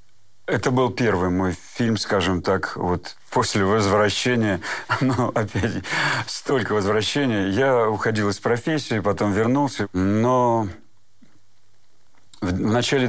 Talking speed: 105 wpm